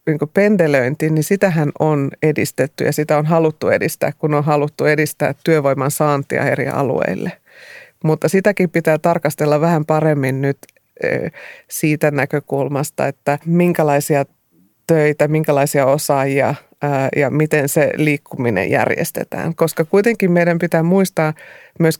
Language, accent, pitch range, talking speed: Finnish, native, 145-165 Hz, 115 wpm